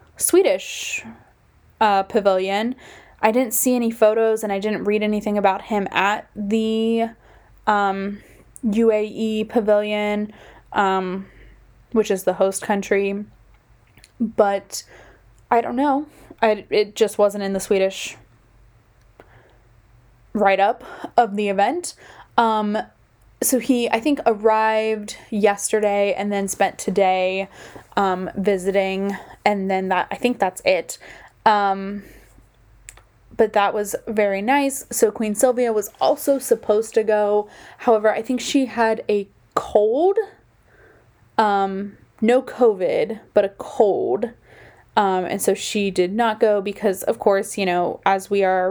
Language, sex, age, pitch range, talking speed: English, female, 10-29, 195-225 Hz, 125 wpm